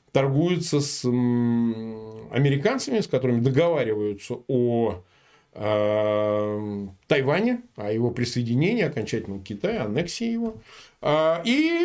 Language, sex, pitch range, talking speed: Russian, male, 115-165 Hz, 80 wpm